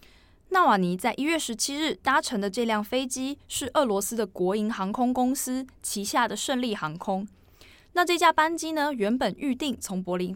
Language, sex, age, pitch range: Chinese, female, 20-39, 200-275 Hz